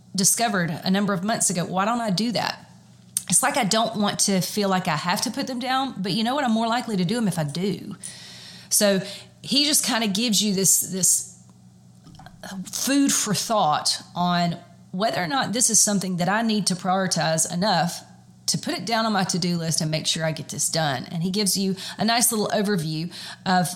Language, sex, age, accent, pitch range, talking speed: English, female, 30-49, American, 170-210 Hz, 220 wpm